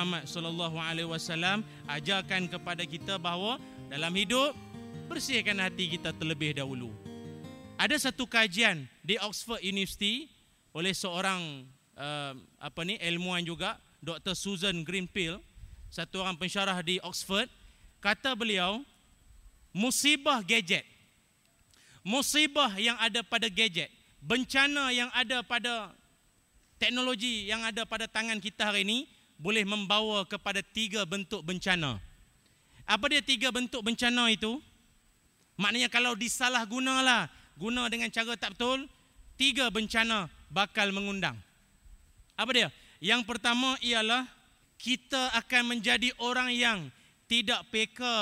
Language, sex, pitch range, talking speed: Malay, male, 175-235 Hz, 115 wpm